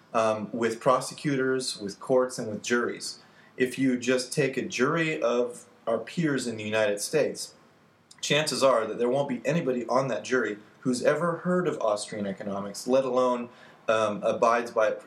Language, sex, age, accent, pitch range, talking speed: English, male, 30-49, American, 105-130 Hz, 165 wpm